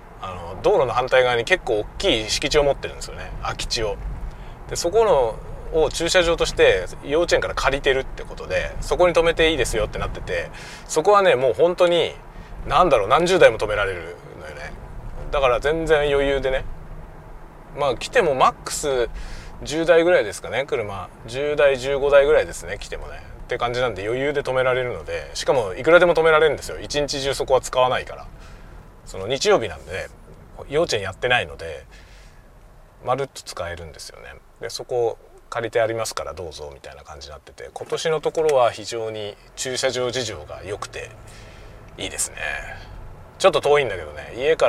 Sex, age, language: male, 20-39, Japanese